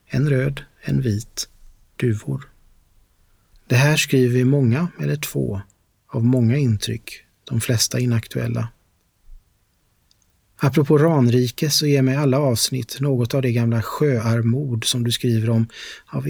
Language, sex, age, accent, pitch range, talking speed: Swedish, male, 30-49, native, 115-135 Hz, 125 wpm